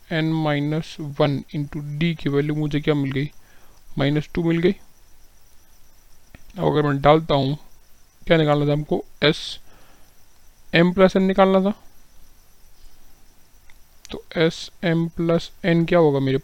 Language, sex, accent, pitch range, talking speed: Hindi, male, native, 135-165 Hz, 110 wpm